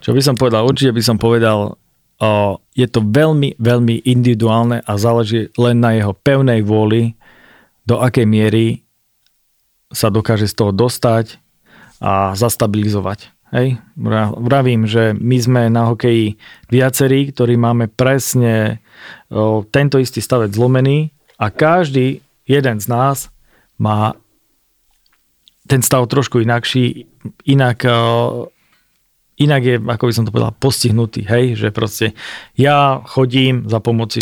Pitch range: 110-130 Hz